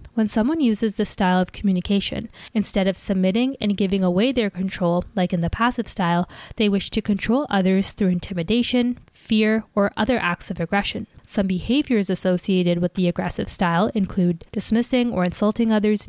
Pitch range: 185-225 Hz